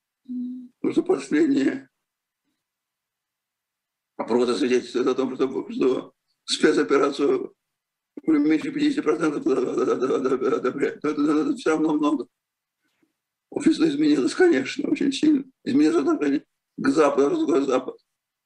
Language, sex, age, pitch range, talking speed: Russian, male, 50-69, 285-340 Hz, 100 wpm